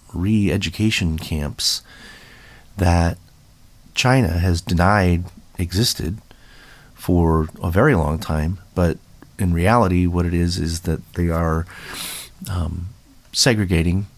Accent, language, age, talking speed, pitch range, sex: American, English, 30-49, 100 wpm, 85-100 Hz, male